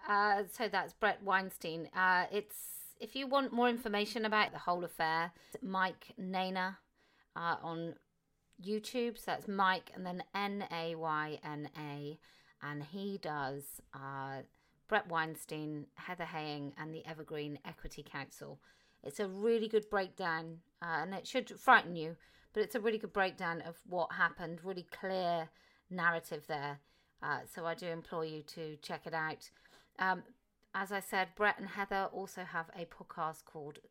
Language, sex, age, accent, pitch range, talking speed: English, female, 30-49, British, 160-205 Hz, 155 wpm